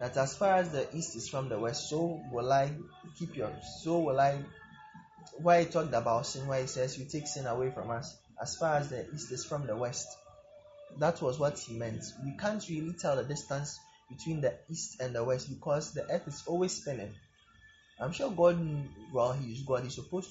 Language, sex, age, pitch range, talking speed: English, male, 20-39, 120-155 Hz, 215 wpm